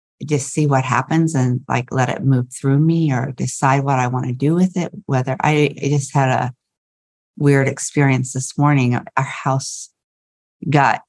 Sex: female